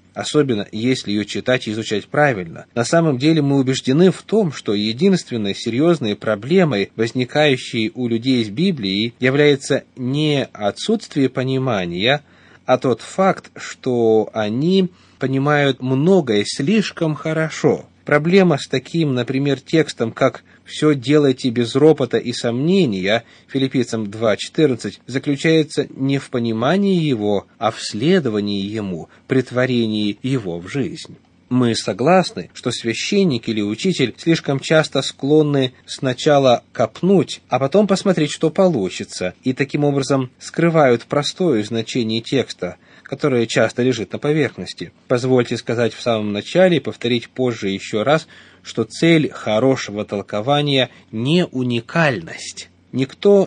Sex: male